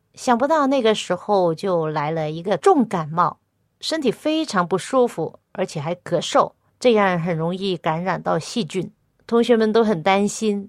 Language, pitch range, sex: Chinese, 170-225 Hz, female